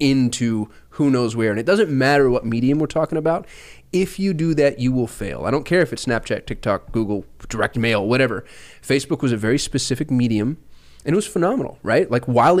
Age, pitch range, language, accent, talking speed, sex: 20-39, 120-150 Hz, English, American, 210 wpm, male